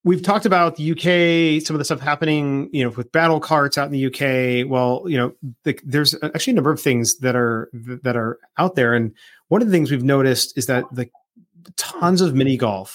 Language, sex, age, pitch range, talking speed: English, male, 30-49, 125-155 Hz, 225 wpm